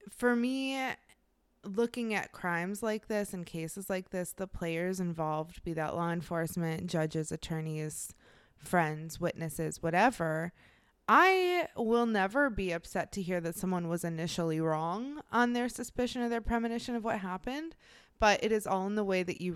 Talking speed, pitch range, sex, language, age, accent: 165 wpm, 170-215 Hz, female, English, 20-39, American